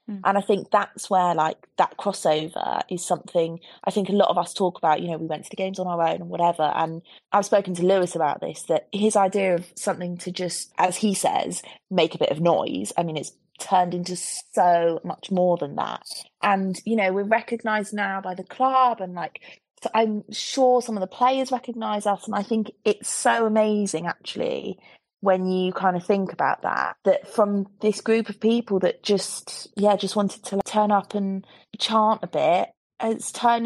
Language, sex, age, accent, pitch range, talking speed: English, female, 30-49, British, 190-235 Hz, 210 wpm